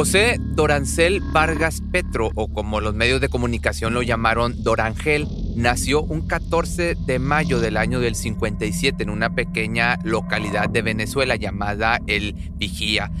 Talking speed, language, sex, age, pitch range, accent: 140 wpm, Spanish, male, 30-49, 100-125 Hz, Mexican